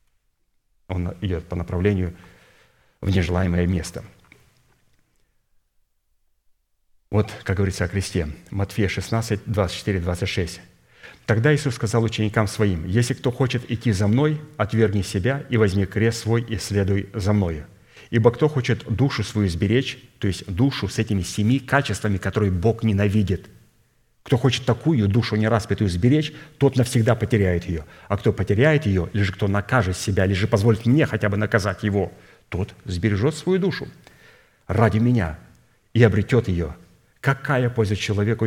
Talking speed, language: 140 wpm, Russian